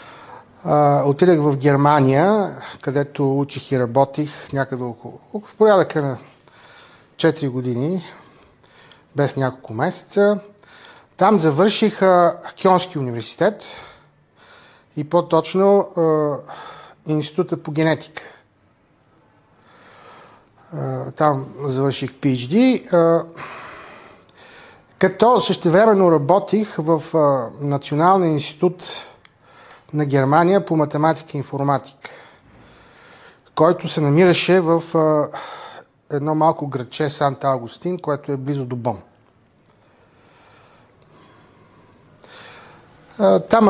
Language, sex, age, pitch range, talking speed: Bulgarian, male, 30-49, 140-175 Hz, 85 wpm